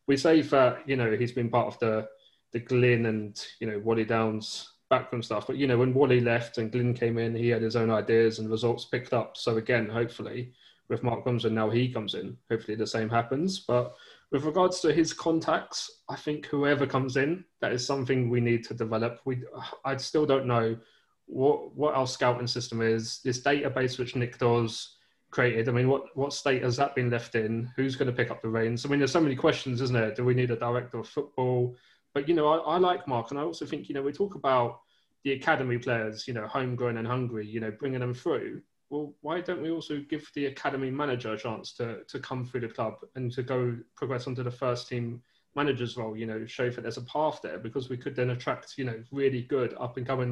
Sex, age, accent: male, 20-39, British